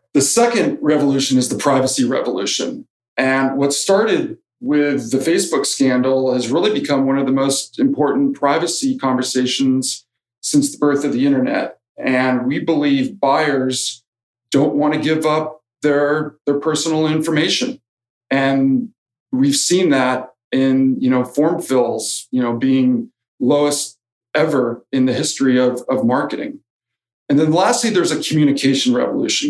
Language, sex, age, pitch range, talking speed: English, male, 40-59, 130-160 Hz, 140 wpm